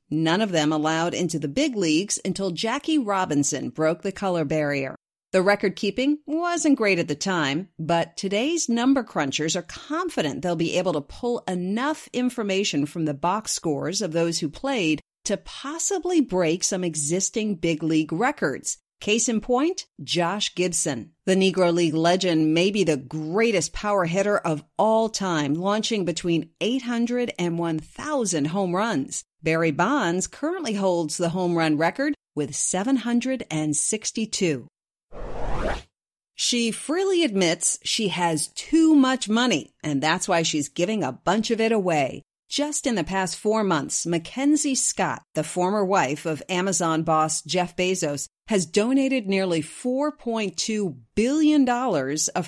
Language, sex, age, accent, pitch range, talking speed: English, female, 50-69, American, 165-235 Hz, 145 wpm